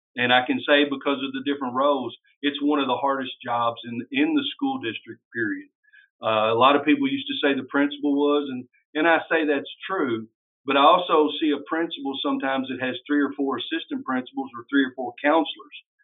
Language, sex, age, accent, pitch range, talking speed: English, male, 50-69, American, 125-150 Hz, 215 wpm